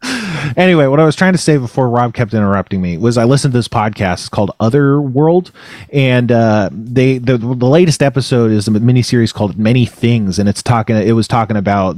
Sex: male